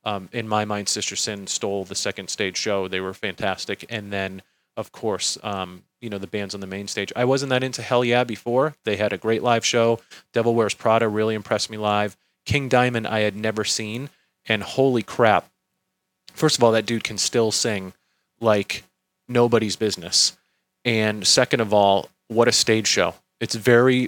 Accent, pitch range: American, 105-120 Hz